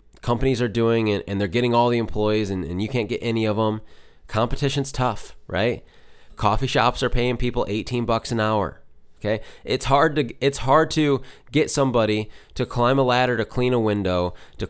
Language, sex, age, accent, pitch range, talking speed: English, male, 20-39, American, 100-130 Hz, 190 wpm